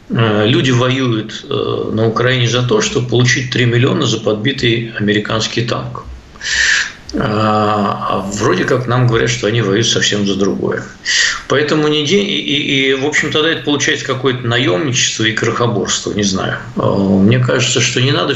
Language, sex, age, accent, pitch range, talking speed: Russian, male, 50-69, native, 105-130 Hz, 150 wpm